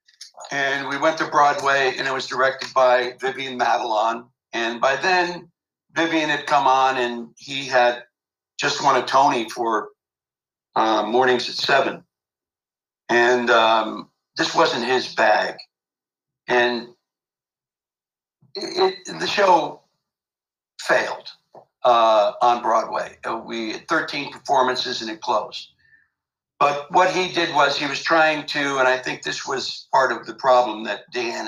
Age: 60-79